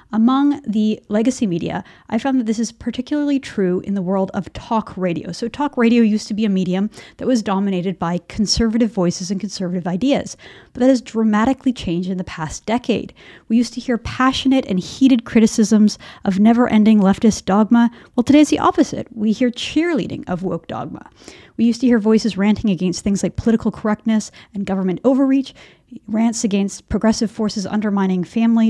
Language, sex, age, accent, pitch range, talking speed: English, female, 30-49, American, 195-235 Hz, 180 wpm